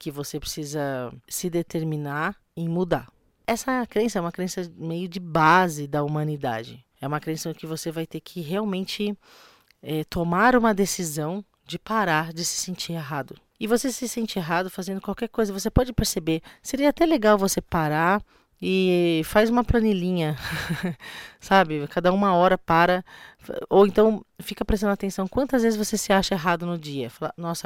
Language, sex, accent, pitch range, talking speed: Portuguese, female, Brazilian, 155-190 Hz, 165 wpm